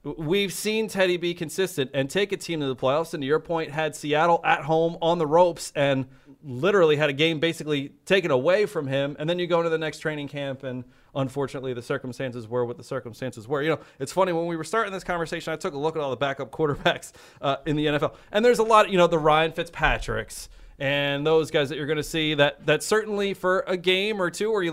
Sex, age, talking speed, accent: male, 30-49, 245 wpm, American